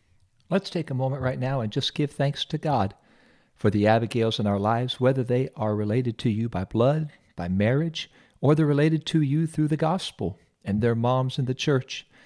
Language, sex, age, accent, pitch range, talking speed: English, male, 50-69, American, 110-135 Hz, 205 wpm